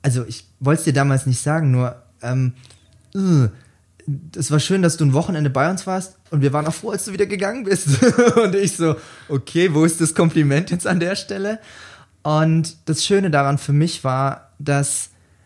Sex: male